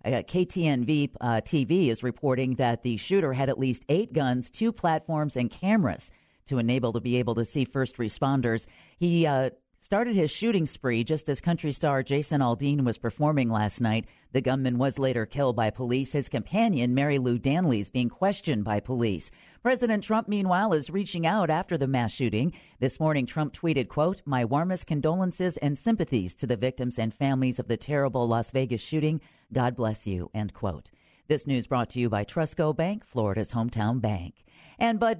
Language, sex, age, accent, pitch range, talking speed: English, female, 40-59, American, 120-160 Hz, 185 wpm